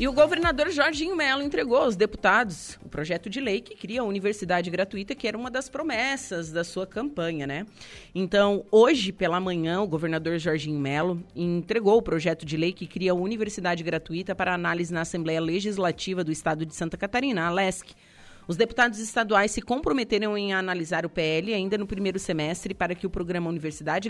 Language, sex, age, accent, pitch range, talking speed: Portuguese, female, 30-49, Brazilian, 170-220 Hz, 180 wpm